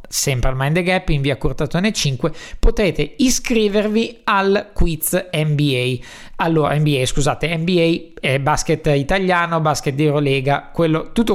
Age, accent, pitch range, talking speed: 20-39, native, 140-190 Hz, 130 wpm